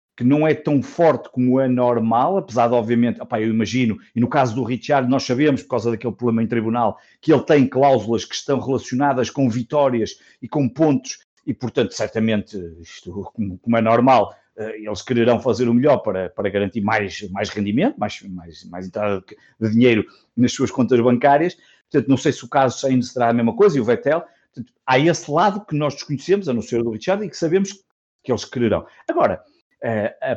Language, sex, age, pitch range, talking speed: Portuguese, male, 50-69, 110-145 Hz, 200 wpm